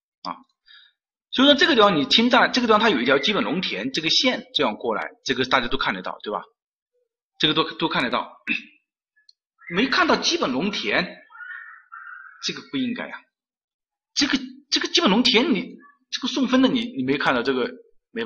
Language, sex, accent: Chinese, male, native